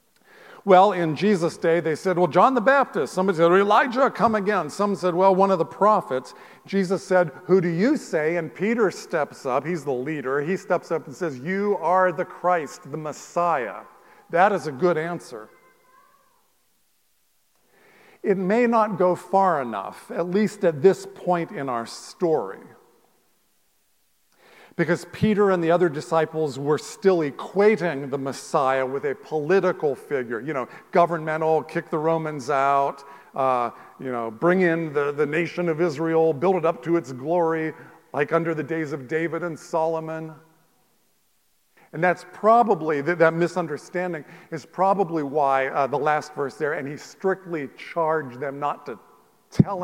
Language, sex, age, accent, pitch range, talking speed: English, male, 50-69, American, 155-190 Hz, 160 wpm